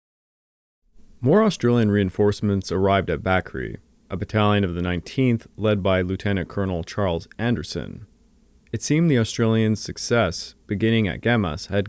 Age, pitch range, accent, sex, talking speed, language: 30-49, 95-120 Hz, American, male, 130 wpm, English